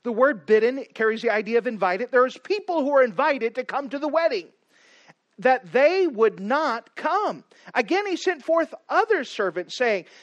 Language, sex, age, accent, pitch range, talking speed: English, male, 40-59, American, 215-305 Hz, 180 wpm